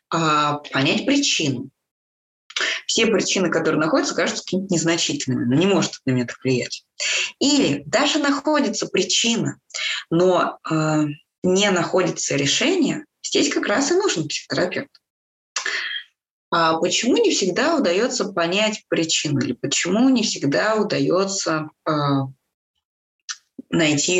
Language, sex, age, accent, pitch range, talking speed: Russian, female, 20-39, native, 170-280 Hz, 100 wpm